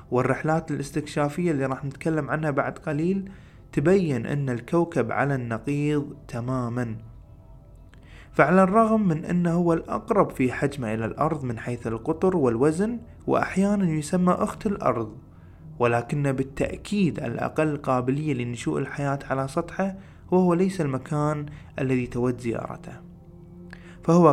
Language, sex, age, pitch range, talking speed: Arabic, male, 20-39, 125-165 Hz, 115 wpm